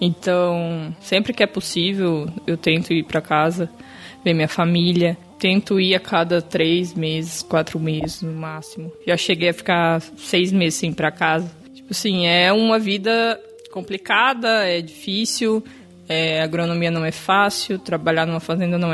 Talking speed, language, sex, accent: 160 wpm, Portuguese, female, Brazilian